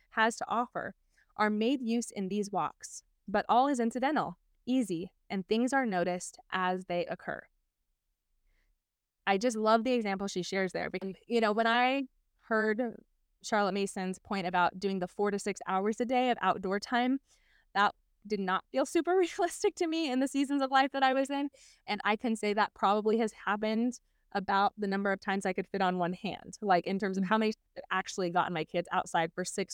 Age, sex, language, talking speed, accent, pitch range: 20-39, female, English, 200 wpm, American, 185-235 Hz